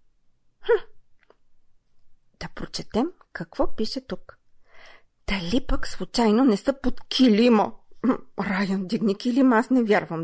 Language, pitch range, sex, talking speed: Bulgarian, 180-290 Hz, female, 110 wpm